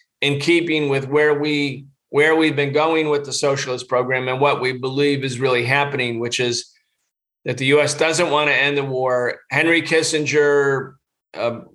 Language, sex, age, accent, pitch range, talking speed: English, male, 40-59, American, 125-150 Hz, 170 wpm